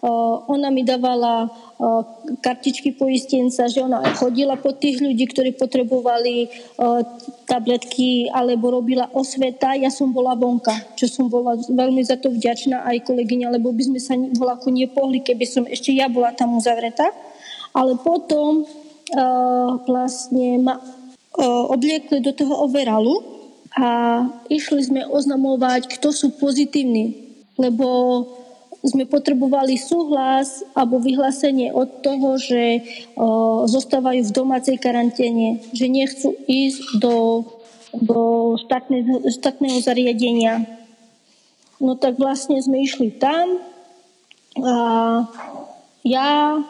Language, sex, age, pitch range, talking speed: Slovak, female, 20-39, 245-280 Hz, 120 wpm